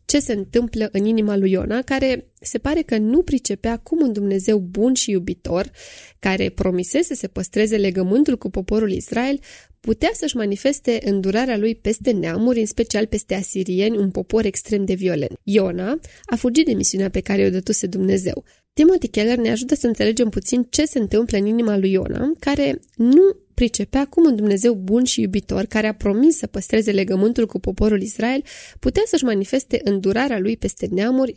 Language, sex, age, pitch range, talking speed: Romanian, female, 20-39, 200-250 Hz, 180 wpm